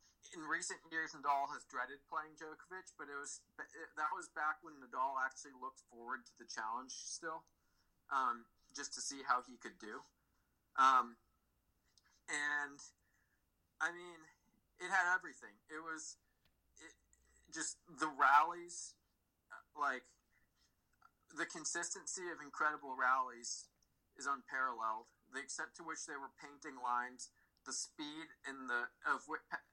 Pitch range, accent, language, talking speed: 125-155 Hz, American, English, 135 wpm